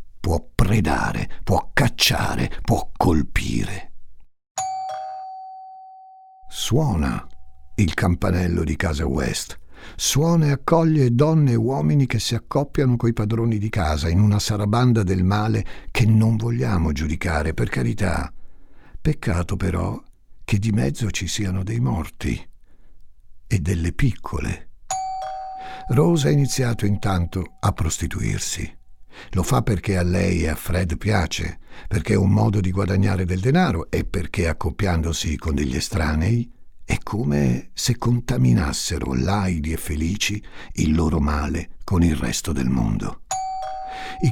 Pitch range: 85-120 Hz